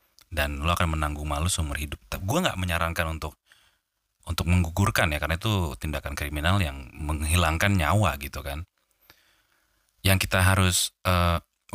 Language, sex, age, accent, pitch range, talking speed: Indonesian, male, 30-49, native, 75-100 Hz, 145 wpm